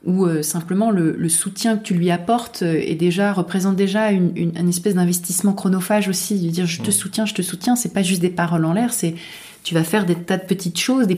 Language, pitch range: French, 160-200 Hz